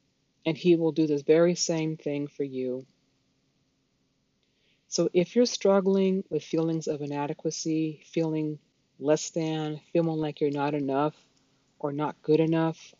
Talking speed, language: 140 wpm, English